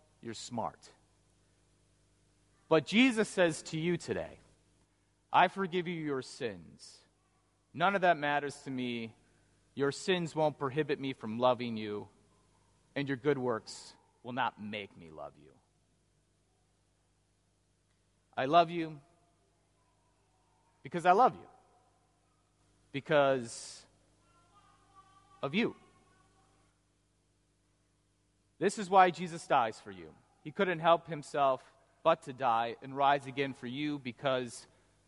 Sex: male